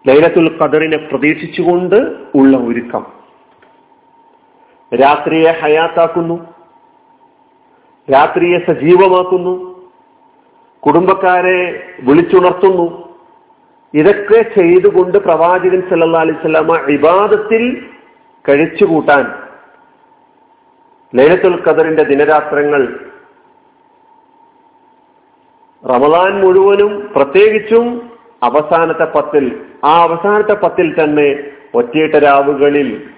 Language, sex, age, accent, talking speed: Malayalam, male, 40-59, native, 60 wpm